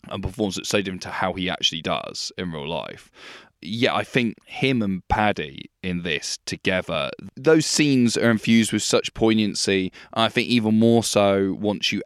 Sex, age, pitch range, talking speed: male, 10-29, 90-110 Hz, 180 wpm